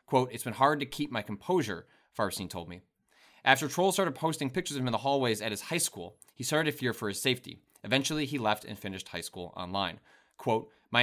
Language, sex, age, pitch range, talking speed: English, male, 30-49, 105-140 Hz, 230 wpm